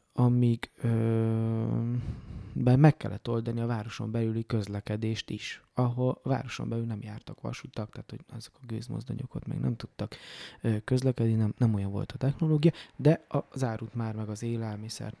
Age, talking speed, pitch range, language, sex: 20-39, 160 wpm, 110-135 Hz, Hungarian, male